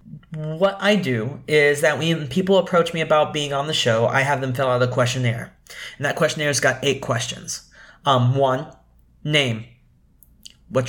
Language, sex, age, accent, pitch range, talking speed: English, male, 30-49, American, 130-165 Hz, 170 wpm